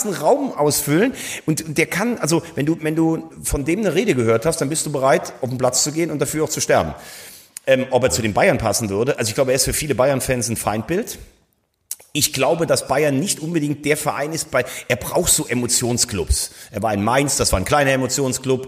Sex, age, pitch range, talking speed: male, 30-49, 115-150 Hz, 230 wpm